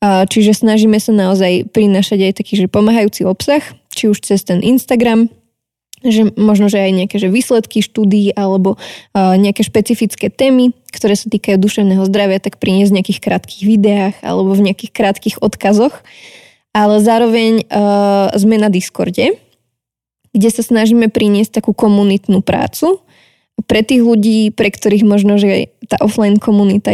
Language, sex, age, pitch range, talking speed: Slovak, female, 20-39, 195-220 Hz, 150 wpm